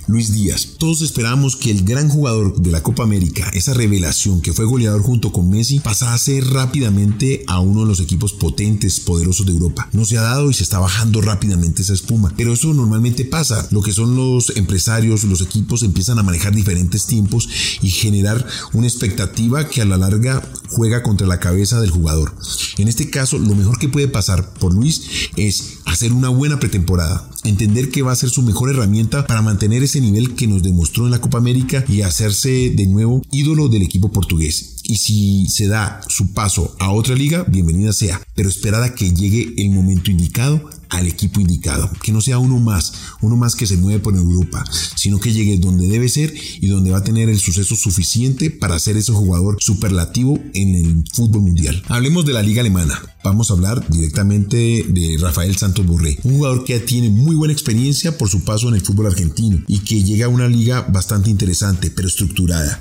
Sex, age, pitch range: male, 40-59, 95-120 Hz